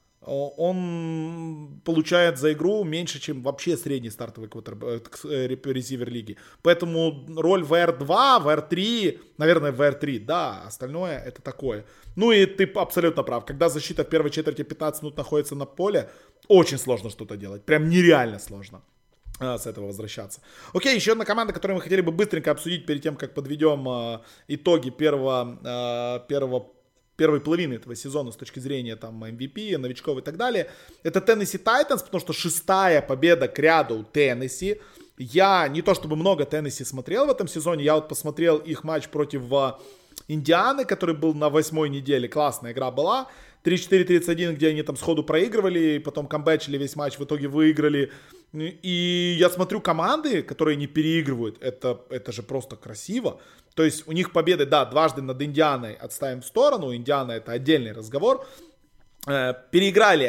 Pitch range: 130-170 Hz